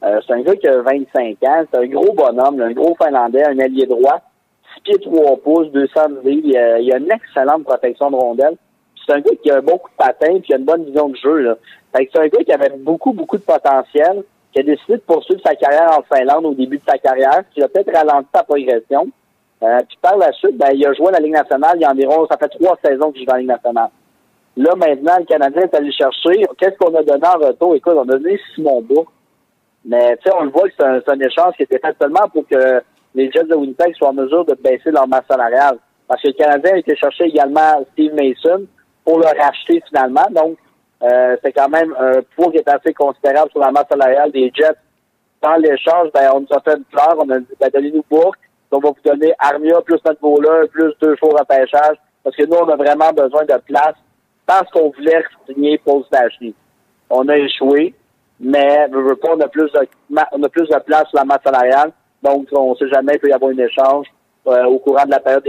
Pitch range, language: 135-160 Hz, French